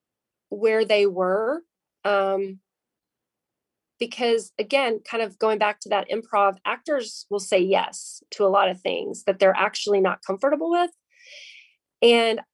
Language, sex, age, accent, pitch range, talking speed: English, female, 30-49, American, 190-230 Hz, 140 wpm